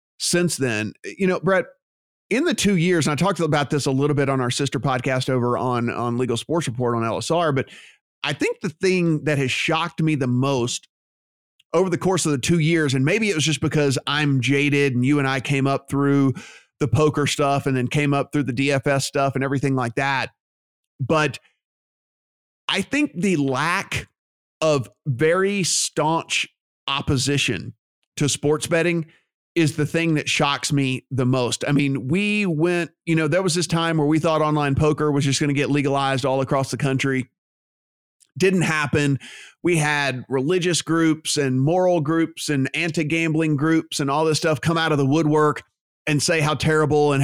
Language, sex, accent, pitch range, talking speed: English, male, American, 135-160 Hz, 190 wpm